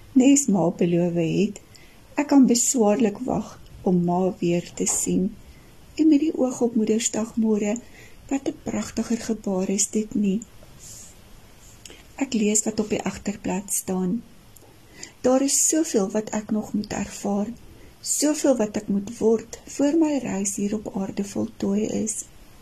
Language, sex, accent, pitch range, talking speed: Dutch, female, Swiss, 200-245 Hz, 150 wpm